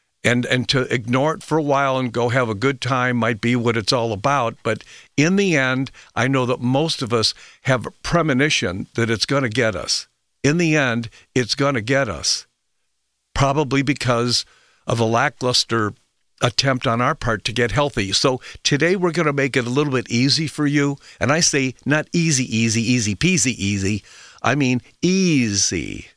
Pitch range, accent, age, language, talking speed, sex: 120-145 Hz, American, 60-79, English, 195 wpm, male